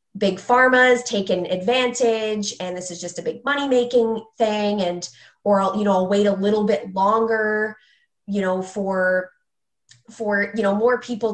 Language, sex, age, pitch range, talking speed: English, female, 20-39, 190-225 Hz, 165 wpm